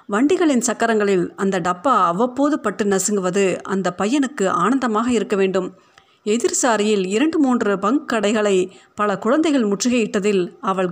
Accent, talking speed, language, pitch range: native, 115 wpm, Tamil, 190-250 Hz